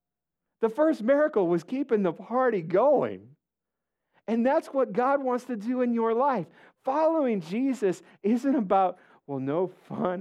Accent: American